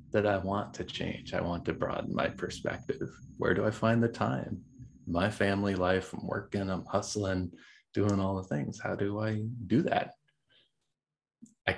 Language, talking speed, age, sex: English, 175 wpm, 30-49, male